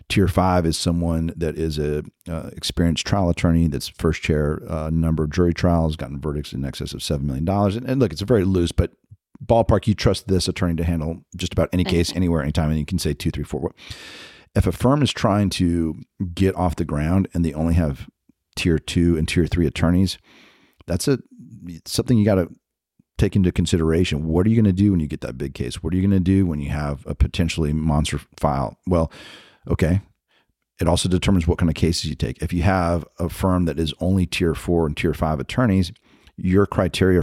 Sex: male